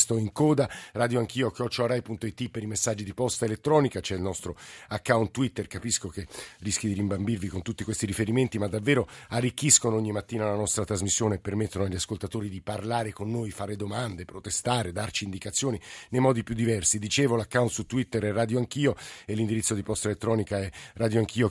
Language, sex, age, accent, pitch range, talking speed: Italian, male, 50-69, native, 105-125 Hz, 185 wpm